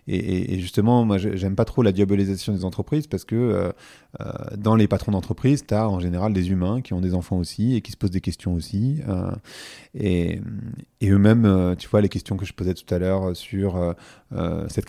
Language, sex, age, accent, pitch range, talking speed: French, male, 30-49, French, 95-120 Hz, 210 wpm